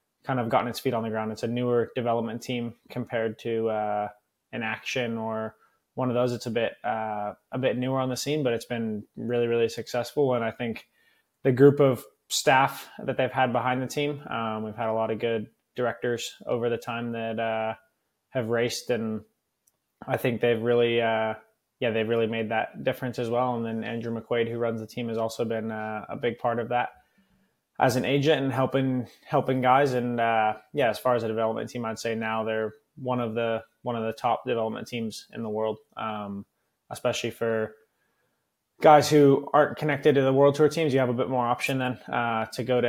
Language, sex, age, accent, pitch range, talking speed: English, male, 20-39, American, 110-125 Hz, 215 wpm